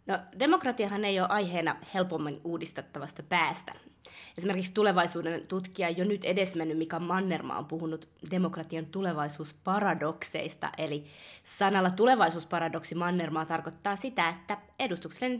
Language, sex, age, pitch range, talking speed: Finnish, female, 20-39, 165-200 Hz, 110 wpm